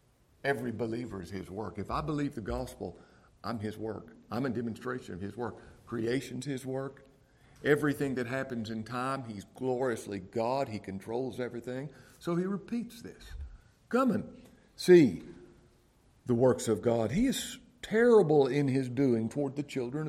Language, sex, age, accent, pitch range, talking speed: English, male, 50-69, American, 115-145 Hz, 160 wpm